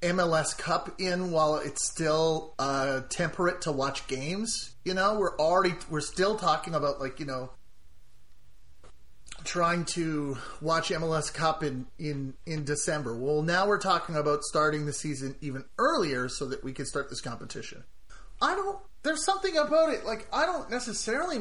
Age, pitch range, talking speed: 30-49, 135-180 Hz, 165 wpm